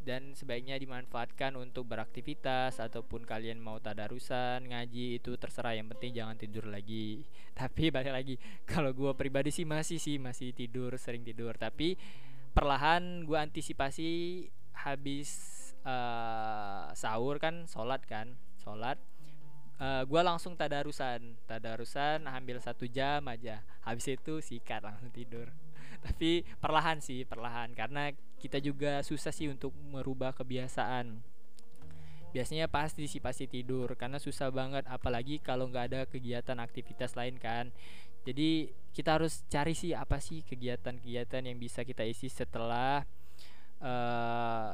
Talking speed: 125 wpm